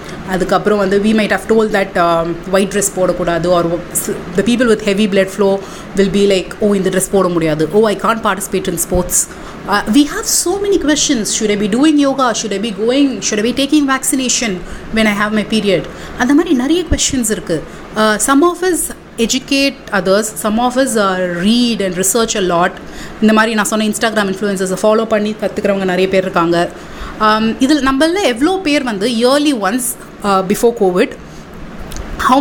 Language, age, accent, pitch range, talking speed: Tamil, 30-49, native, 190-255 Hz, 190 wpm